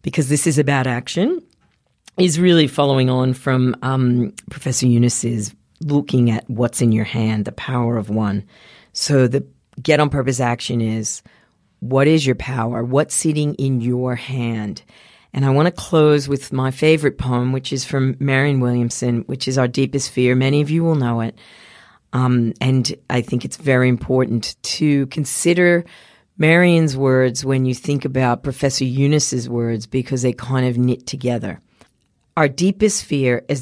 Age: 40-59